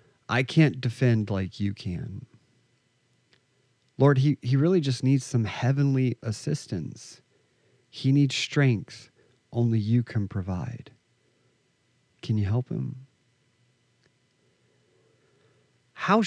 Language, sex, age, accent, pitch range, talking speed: English, male, 40-59, American, 115-140 Hz, 100 wpm